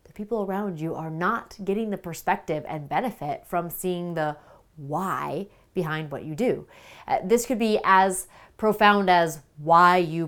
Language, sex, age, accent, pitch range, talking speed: English, female, 30-49, American, 155-210 Hz, 165 wpm